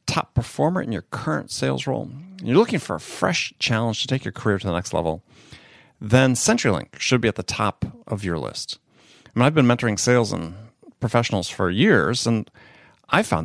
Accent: American